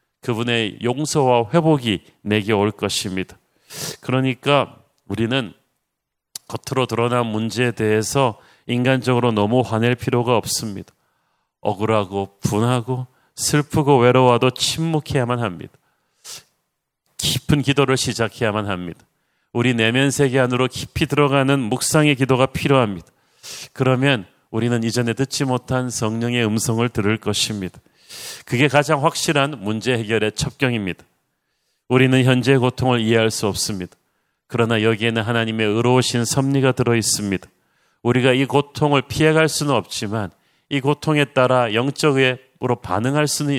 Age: 40-59